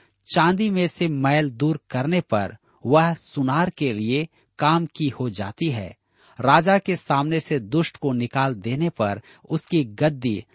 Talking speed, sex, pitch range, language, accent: 155 wpm, male, 110-160 Hz, Hindi, native